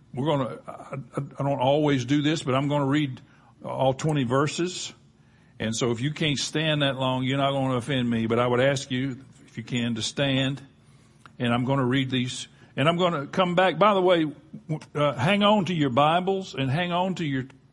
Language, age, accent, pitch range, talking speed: English, 60-79, American, 125-160 Hz, 205 wpm